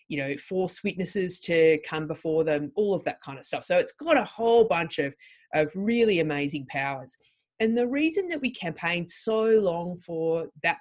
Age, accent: 30-49, Australian